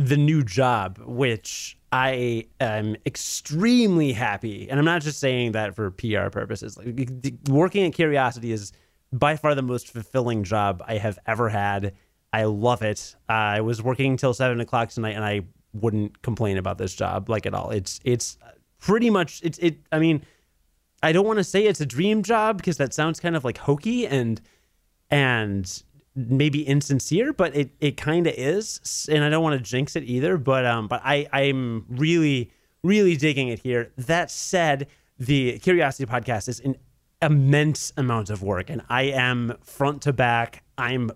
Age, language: 30-49, English